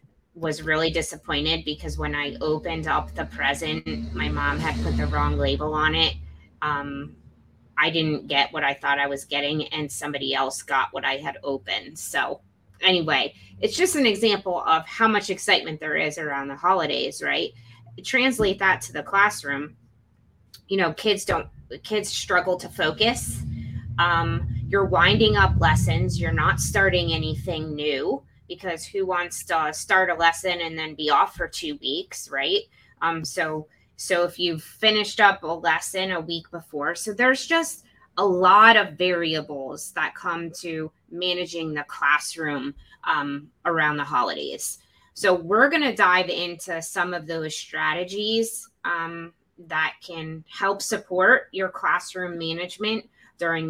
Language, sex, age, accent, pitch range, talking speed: English, female, 20-39, American, 145-190 Hz, 155 wpm